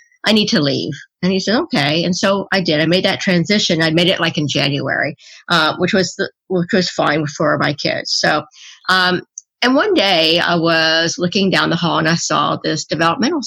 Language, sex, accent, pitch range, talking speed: English, female, American, 160-190 Hz, 215 wpm